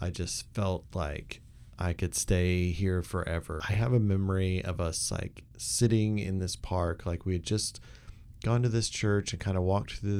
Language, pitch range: English, 90-110 Hz